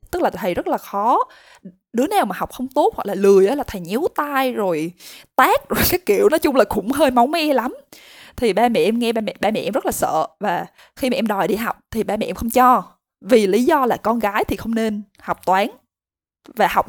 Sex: female